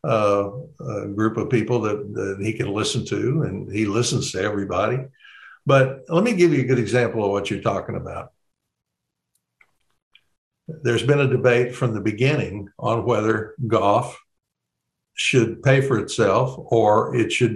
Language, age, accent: English, 60-79, American